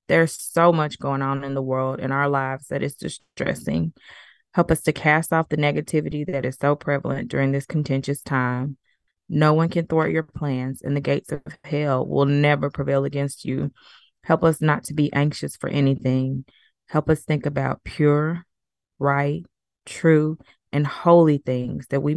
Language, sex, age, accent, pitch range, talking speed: English, female, 20-39, American, 135-150 Hz, 175 wpm